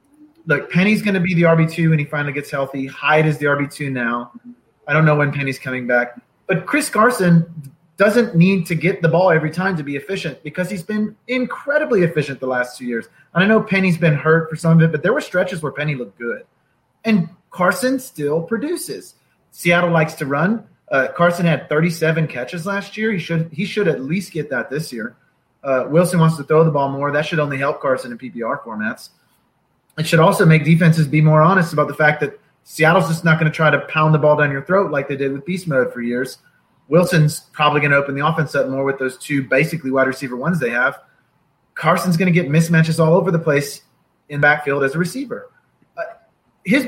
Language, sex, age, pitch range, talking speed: English, male, 30-49, 145-185 Hz, 220 wpm